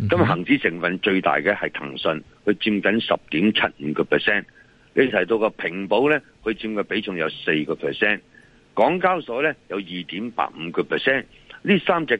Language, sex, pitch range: Chinese, male, 100-140 Hz